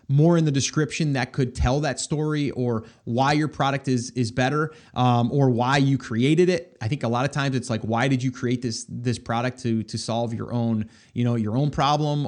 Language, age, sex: English, 30-49, male